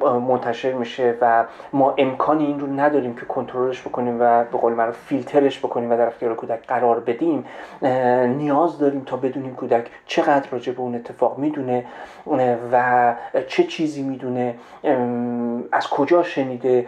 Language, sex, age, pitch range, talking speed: Persian, male, 40-59, 120-135 Hz, 140 wpm